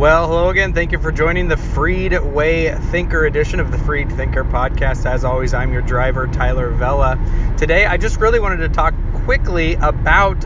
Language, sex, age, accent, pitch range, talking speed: English, male, 30-49, American, 100-135 Hz, 190 wpm